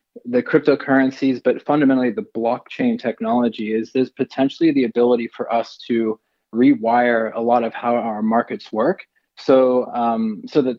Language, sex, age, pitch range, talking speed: English, male, 20-39, 115-130 Hz, 150 wpm